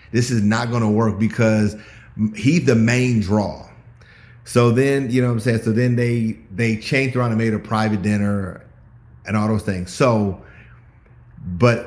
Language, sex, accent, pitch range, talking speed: English, male, American, 100-120 Hz, 175 wpm